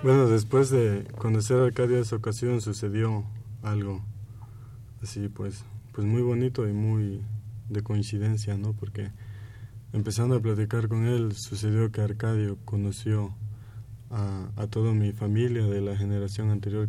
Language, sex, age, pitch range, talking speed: Spanish, male, 20-39, 105-110 Hz, 140 wpm